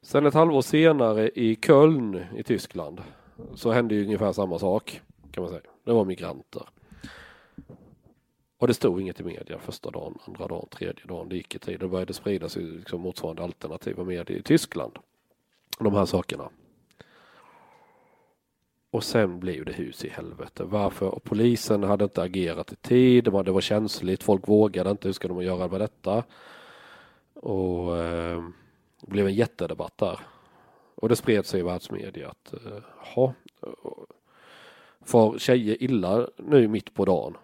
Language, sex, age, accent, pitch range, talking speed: Swedish, male, 30-49, native, 95-120 Hz, 155 wpm